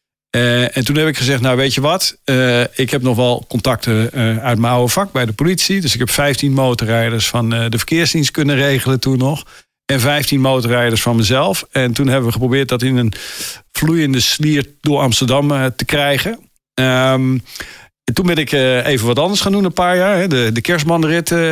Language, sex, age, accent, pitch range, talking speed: Dutch, male, 50-69, Dutch, 125-150 Hz, 210 wpm